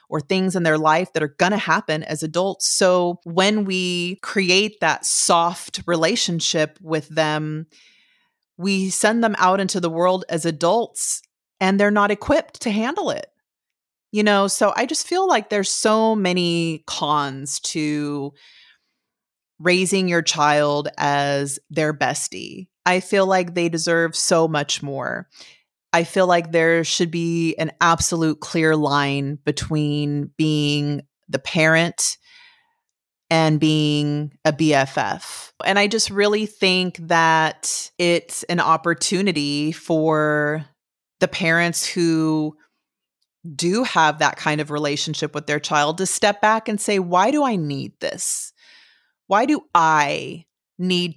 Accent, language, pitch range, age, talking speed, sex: American, English, 155-190 Hz, 30-49, 135 wpm, female